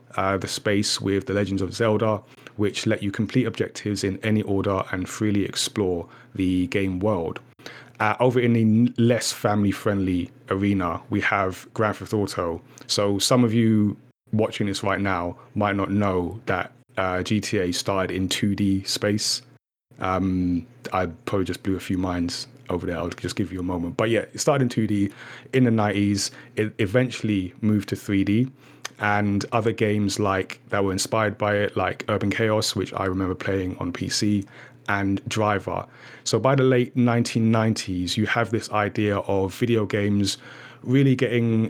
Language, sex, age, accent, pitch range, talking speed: English, male, 30-49, British, 95-115 Hz, 165 wpm